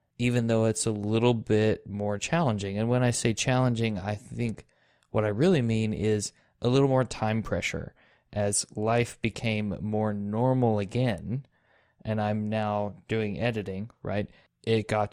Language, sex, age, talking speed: English, male, 20-39, 155 wpm